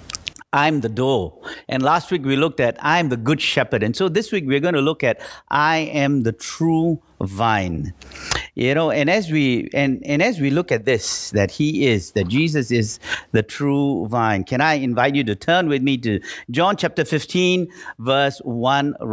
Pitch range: 120-160 Hz